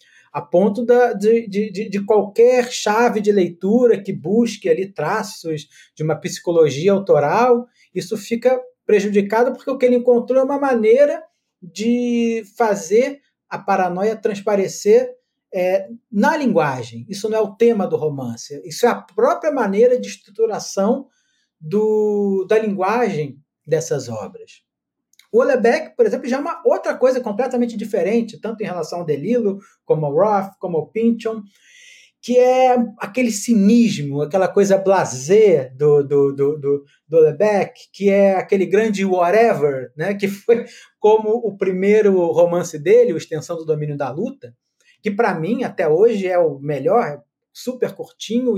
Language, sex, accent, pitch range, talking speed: Portuguese, male, Brazilian, 175-240 Hz, 140 wpm